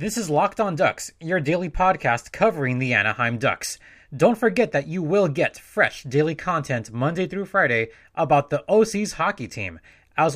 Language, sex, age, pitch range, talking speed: English, male, 20-39, 120-170 Hz, 175 wpm